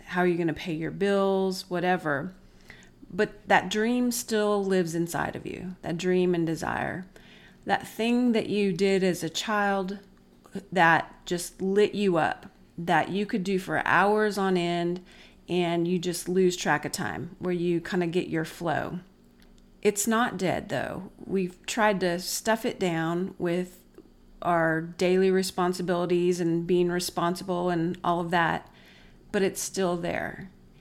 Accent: American